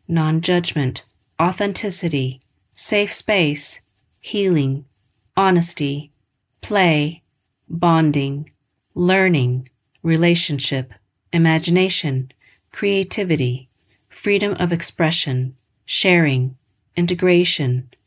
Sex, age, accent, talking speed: female, 40-59, American, 55 wpm